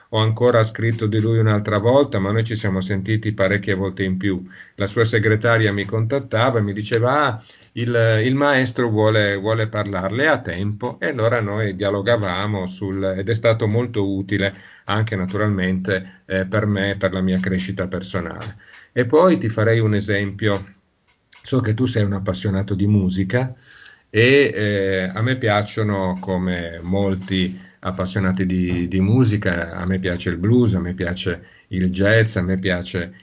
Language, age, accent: Italian, 50-69, native